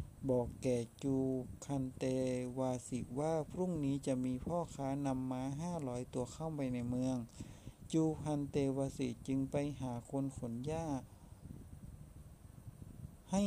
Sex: male